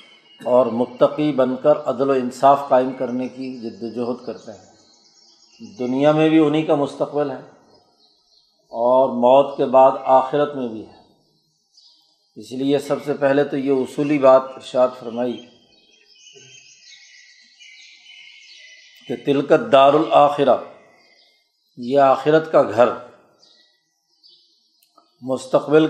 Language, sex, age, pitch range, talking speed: Urdu, male, 50-69, 130-150 Hz, 110 wpm